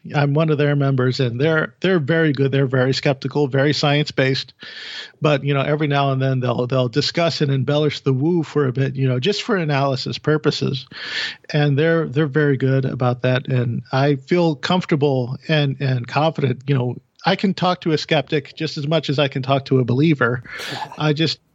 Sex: male